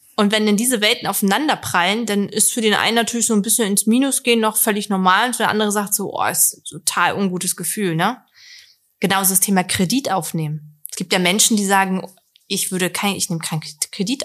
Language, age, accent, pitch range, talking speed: German, 20-39, German, 175-220 Hz, 220 wpm